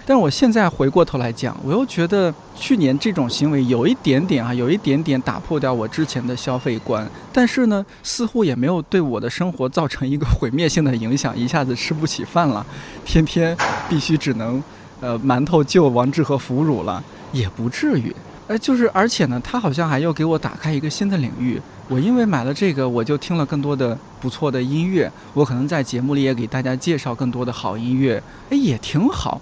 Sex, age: male, 20-39